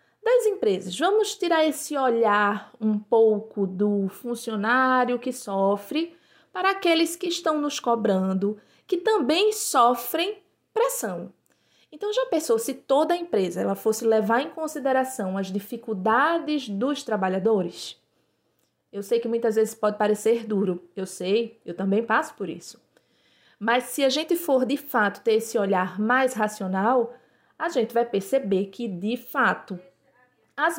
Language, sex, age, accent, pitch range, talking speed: Portuguese, female, 20-39, Brazilian, 215-300 Hz, 140 wpm